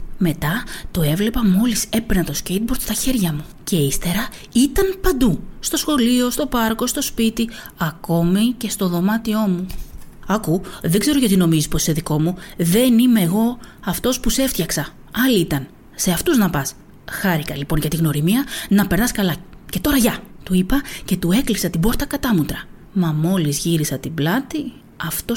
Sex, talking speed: female, 170 wpm